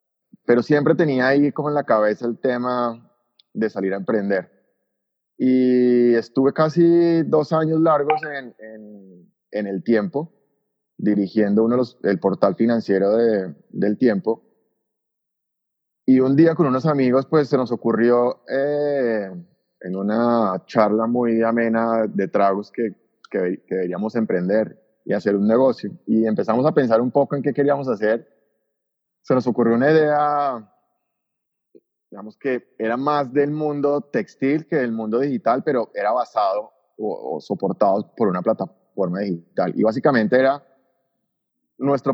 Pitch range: 110-145 Hz